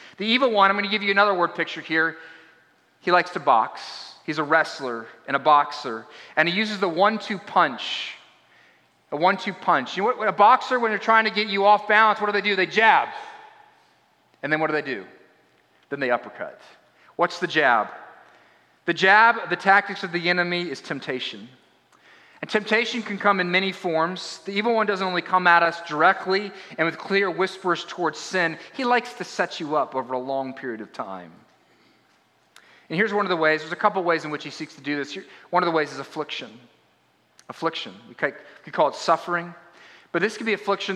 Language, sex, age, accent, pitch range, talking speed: English, male, 30-49, American, 160-205 Hz, 205 wpm